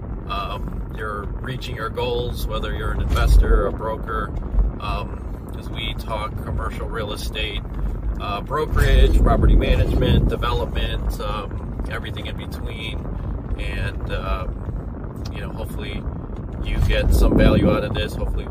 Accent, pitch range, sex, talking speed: American, 75-110 Hz, male, 135 wpm